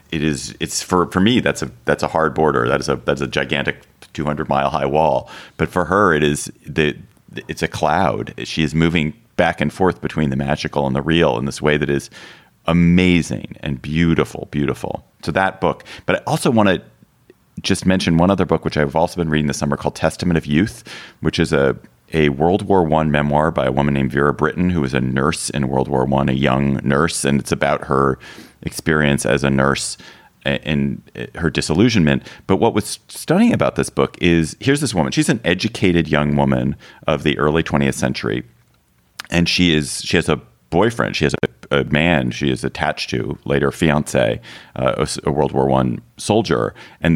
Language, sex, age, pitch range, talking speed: English, male, 30-49, 70-85 Hz, 200 wpm